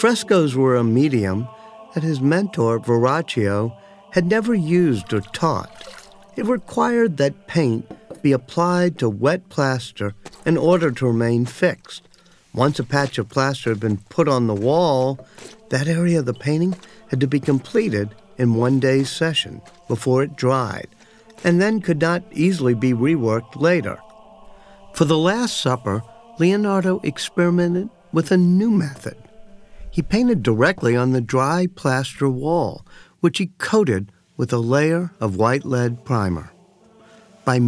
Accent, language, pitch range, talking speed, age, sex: American, English, 120-180 Hz, 145 wpm, 50-69, male